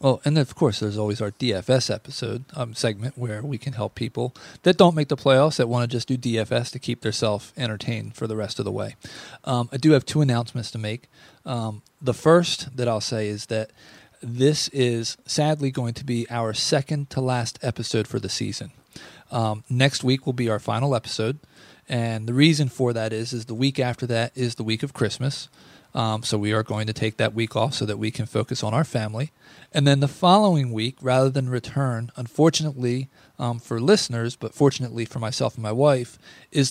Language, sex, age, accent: English, male, 30-49, American